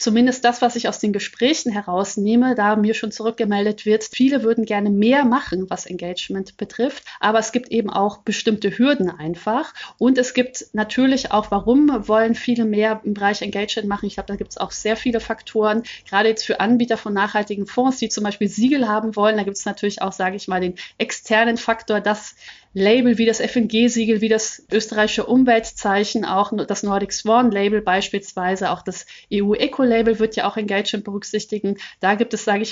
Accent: German